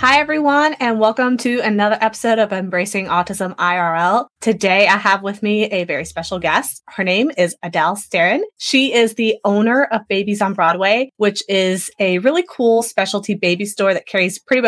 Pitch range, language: 180-225 Hz, English